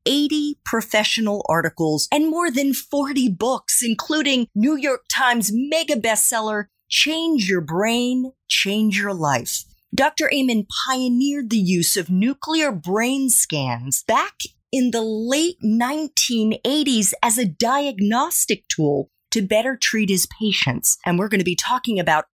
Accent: American